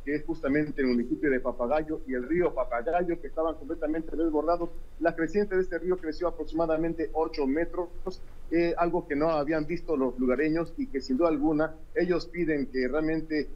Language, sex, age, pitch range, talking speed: Spanish, male, 40-59, 125-160 Hz, 180 wpm